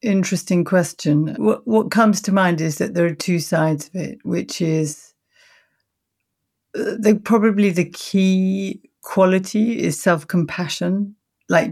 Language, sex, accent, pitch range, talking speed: English, female, British, 145-185 Hz, 130 wpm